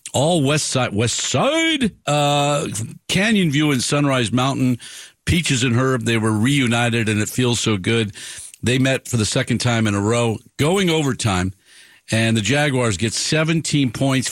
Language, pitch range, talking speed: English, 110-145 Hz, 165 wpm